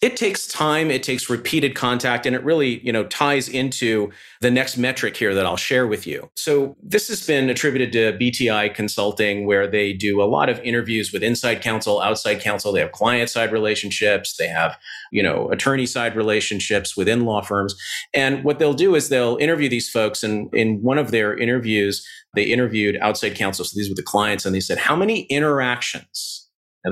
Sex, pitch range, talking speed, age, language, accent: male, 105-140 Hz, 195 wpm, 40-59, English, American